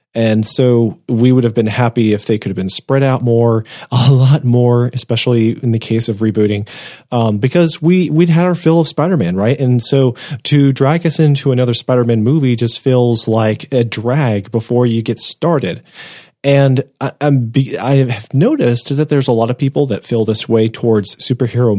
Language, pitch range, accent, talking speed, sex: English, 110-135 Hz, American, 200 wpm, male